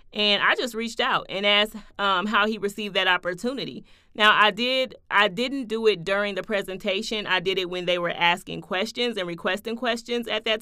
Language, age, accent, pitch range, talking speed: English, 30-49, American, 185-220 Hz, 205 wpm